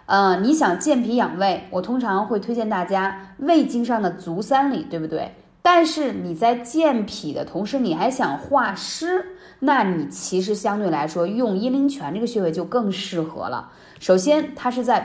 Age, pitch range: 20-39, 185-265 Hz